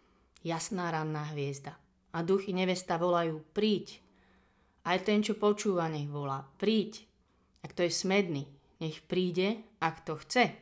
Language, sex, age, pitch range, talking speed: Slovak, female, 30-49, 155-185 Hz, 135 wpm